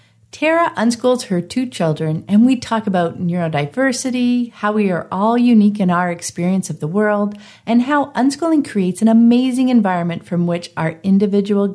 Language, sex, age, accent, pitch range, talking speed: English, female, 50-69, American, 170-230 Hz, 165 wpm